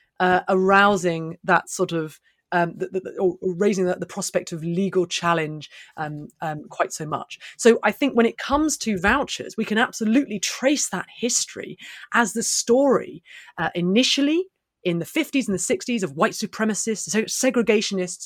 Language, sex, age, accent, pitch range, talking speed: English, female, 30-49, British, 180-235 Hz, 165 wpm